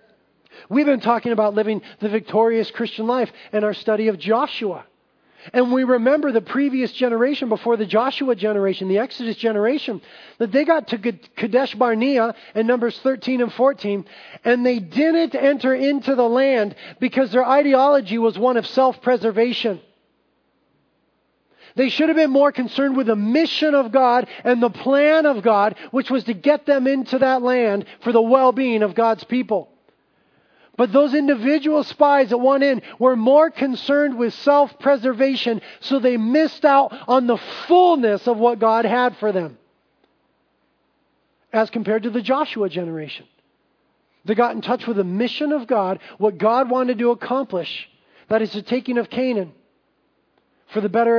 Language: English